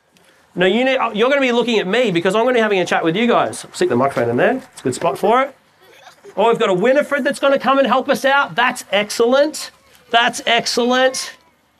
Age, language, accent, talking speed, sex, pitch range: 40-59, English, Australian, 240 wpm, male, 150-215 Hz